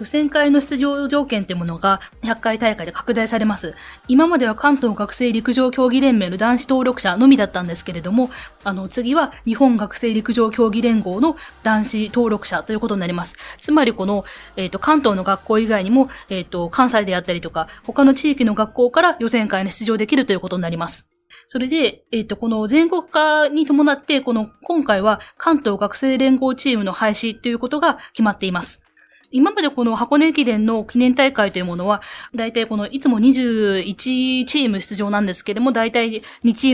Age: 20-39